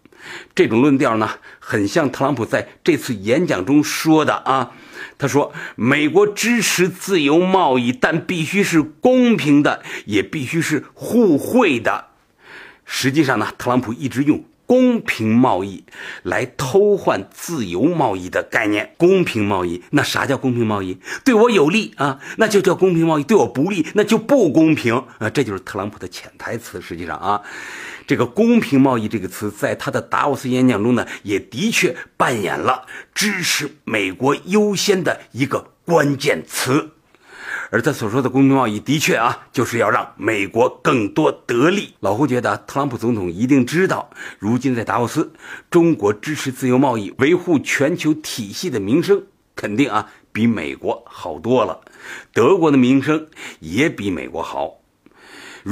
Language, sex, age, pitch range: Chinese, male, 50-69, 115-175 Hz